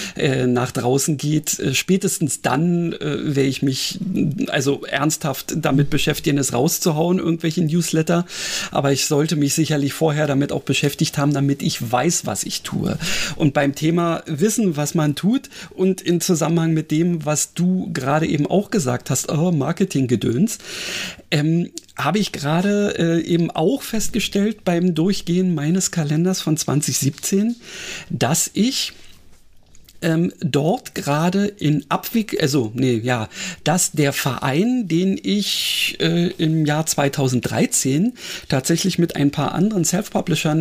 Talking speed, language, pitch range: 135 wpm, German, 145-185 Hz